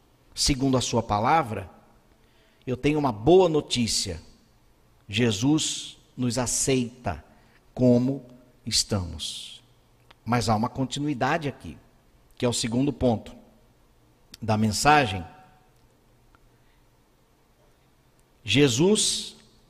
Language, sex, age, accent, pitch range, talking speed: Portuguese, male, 50-69, Brazilian, 120-180 Hz, 80 wpm